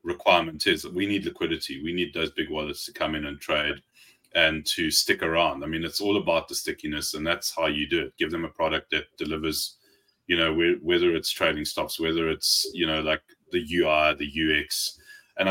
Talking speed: 215 wpm